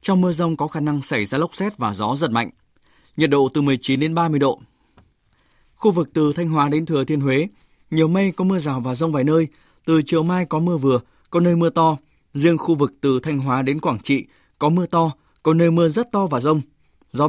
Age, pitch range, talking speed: 20-39, 145-170 Hz, 240 wpm